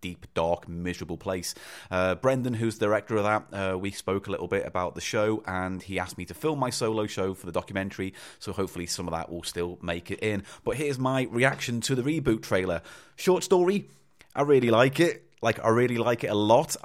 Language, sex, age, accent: English, male, 30-49, British